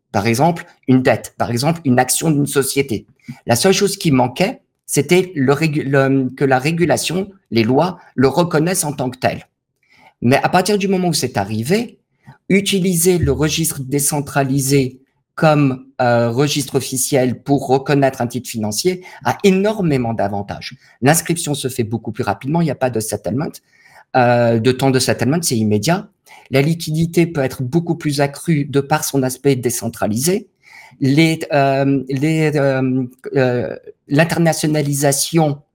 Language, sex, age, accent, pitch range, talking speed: French, male, 50-69, French, 130-160 Hz, 155 wpm